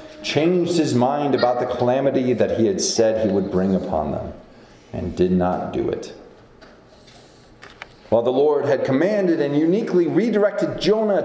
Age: 40-59